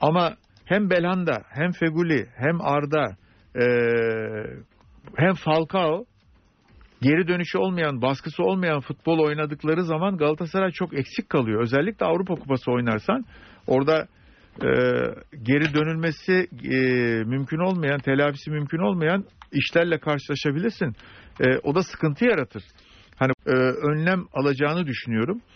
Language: Turkish